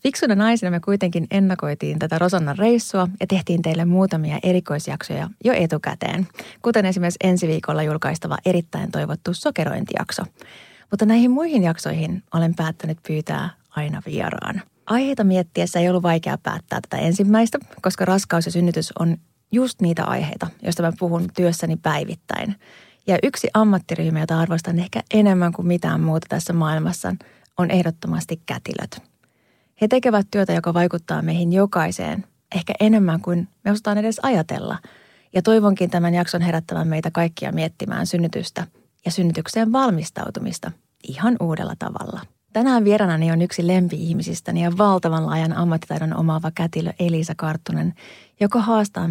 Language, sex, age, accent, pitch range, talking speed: Finnish, female, 30-49, native, 165-205 Hz, 135 wpm